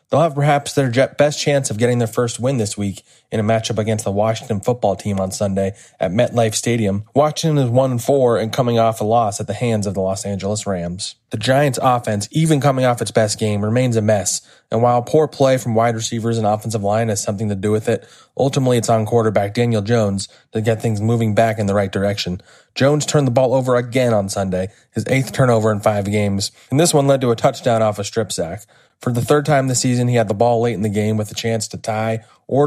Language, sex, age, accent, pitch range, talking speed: English, male, 20-39, American, 105-125 Hz, 240 wpm